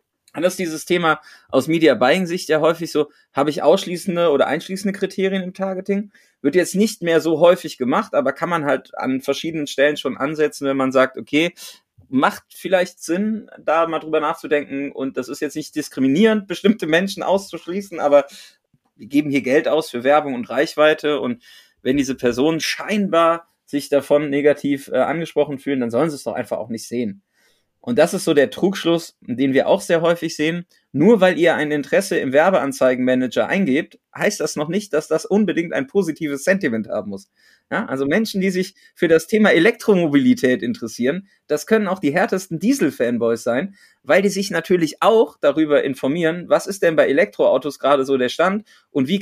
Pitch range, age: 140-190 Hz, 30-49